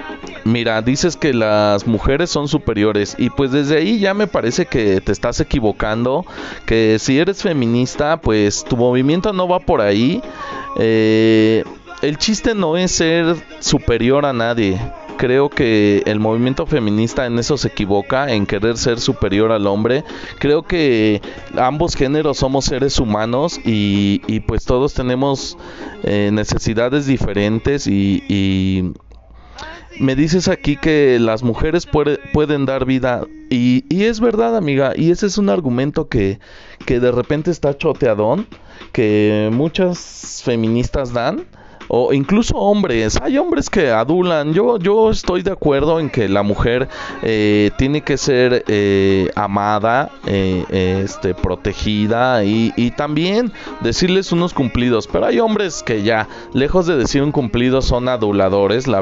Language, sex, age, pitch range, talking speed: Spanish, male, 30-49, 110-150 Hz, 145 wpm